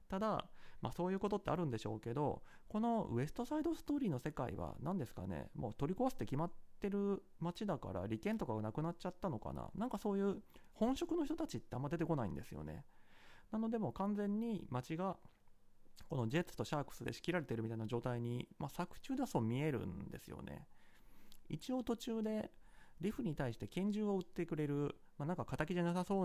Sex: male